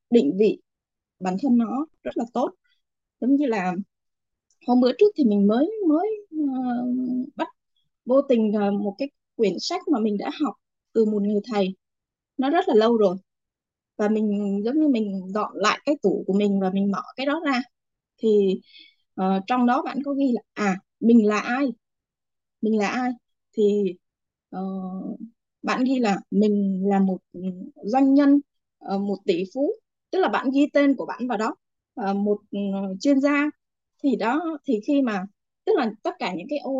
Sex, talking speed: female, 170 wpm